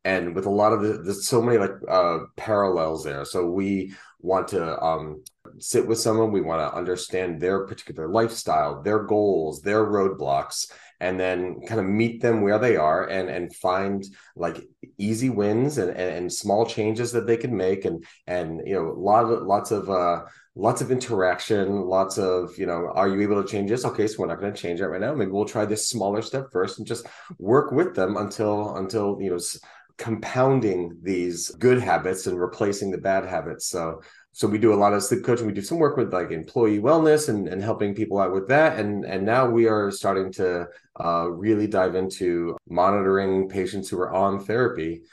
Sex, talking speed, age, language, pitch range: male, 205 wpm, 30-49, English, 95-110 Hz